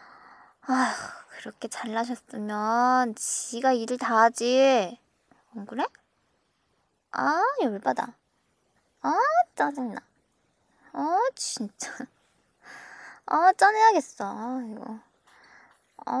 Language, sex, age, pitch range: Korean, male, 10-29, 215-275 Hz